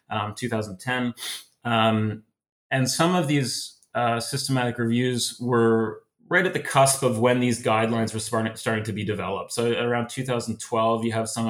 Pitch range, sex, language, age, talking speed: 110-125 Hz, male, English, 30-49, 155 wpm